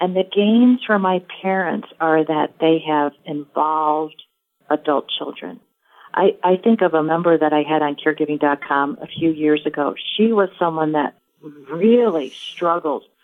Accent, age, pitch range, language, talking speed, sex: American, 40-59, 150-180 Hz, English, 155 wpm, female